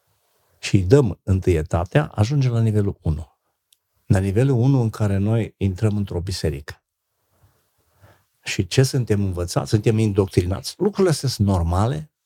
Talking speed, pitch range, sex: 130 wpm, 95-130 Hz, male